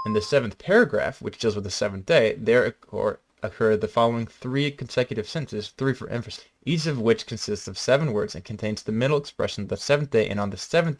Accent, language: American, English